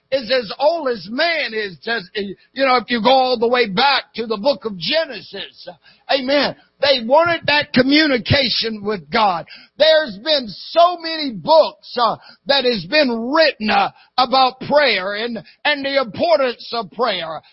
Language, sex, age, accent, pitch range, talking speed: English, male, 60-79, American, 215-270 Hz, 160 wpm